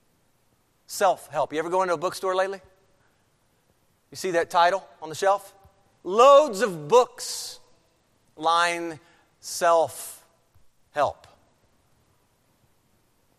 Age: 40-59